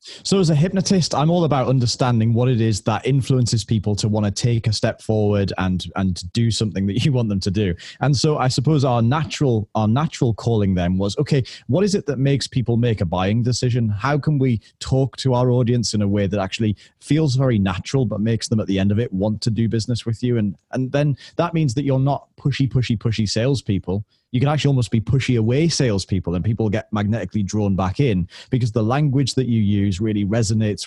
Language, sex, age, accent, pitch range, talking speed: English, male, 30-49, British, 105-130 Hz, 225 wpm